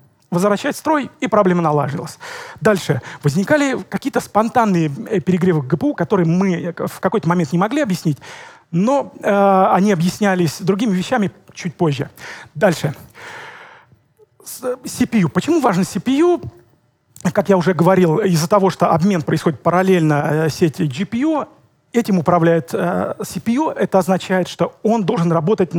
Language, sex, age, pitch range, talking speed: Russian, male, 40-59, 160-205 Hz, 130 wpm